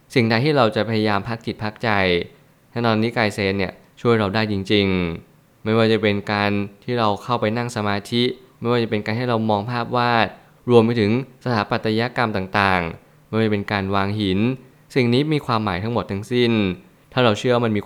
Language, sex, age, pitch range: Thai, male, 20-39, 100-120 Hz